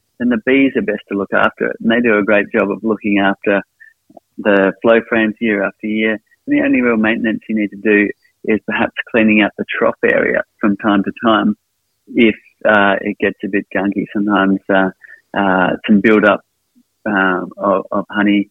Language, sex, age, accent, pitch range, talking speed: English, male, 30-49, Australian, 100-110 Hz, 200 wpm